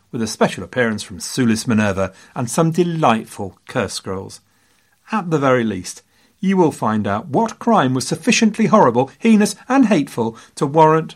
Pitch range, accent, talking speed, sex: 115-175 Hz, British, 160 wpm, male